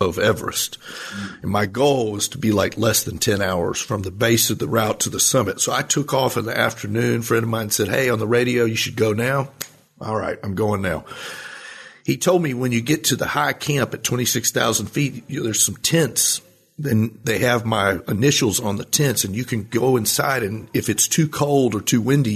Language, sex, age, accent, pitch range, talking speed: English, male, 40-59, American, 110-130 Hz, 230 wpm